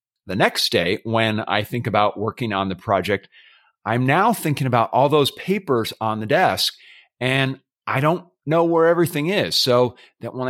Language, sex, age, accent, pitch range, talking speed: English, male, 40-59, American, 125-160 Hz, 175 wpm